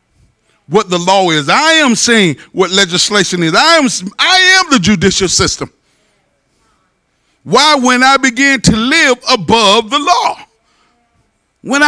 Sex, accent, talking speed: male, American, 135 wpm